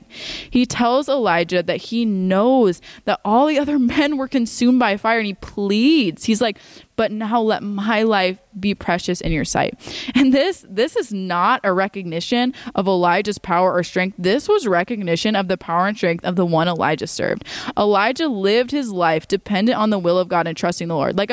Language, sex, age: English, female, 20-39